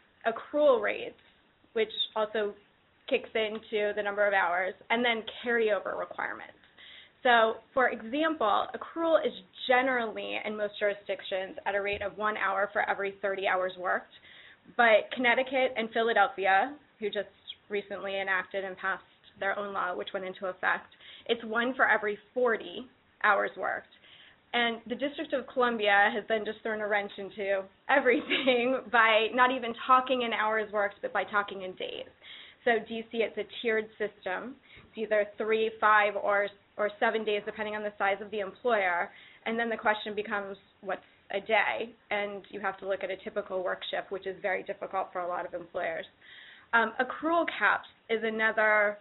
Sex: female